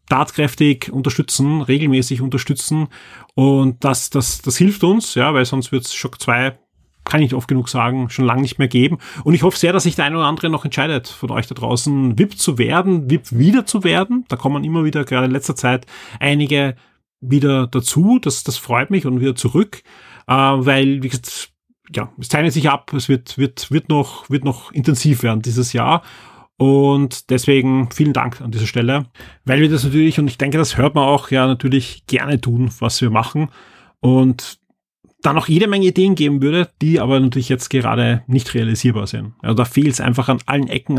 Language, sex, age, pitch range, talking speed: German, male, 30-49, 125-150 Hz, 200 wpm